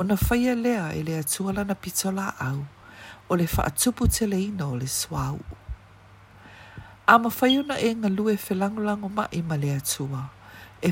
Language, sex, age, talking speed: English, female, 50-69, 150 wpm